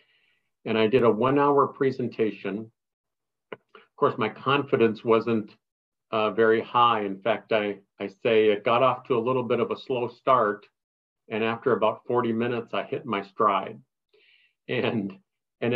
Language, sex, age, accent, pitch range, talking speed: English, male, 50-69, American, 110-140 Hz, 160 wpm